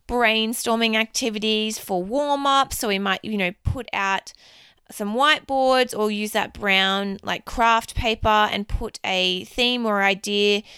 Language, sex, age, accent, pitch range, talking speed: English, female, 20-39, Australian, 200-240 Hz, 145 wpm